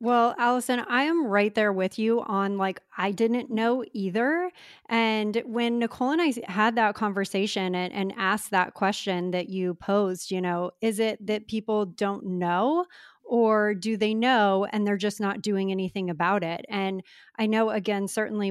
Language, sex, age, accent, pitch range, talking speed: English, female, 30-49, American, 200-250 Hz, 180 wpm